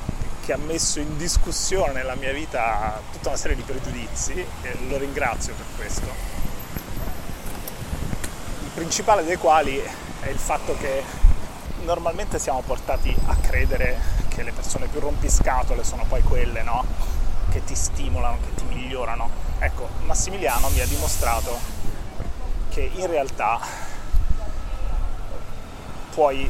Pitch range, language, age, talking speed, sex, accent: 75-115 Hz, Italian, 30-49, 125 wpm, male, native